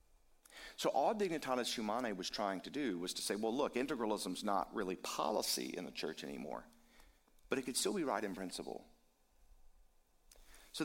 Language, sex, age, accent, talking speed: English, male, 50-69, American, 165 wpm